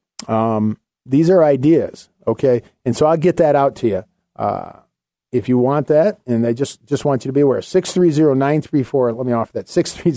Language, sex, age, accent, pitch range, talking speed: English, male, 40-59, American, 115-150 Hz, 230 wpm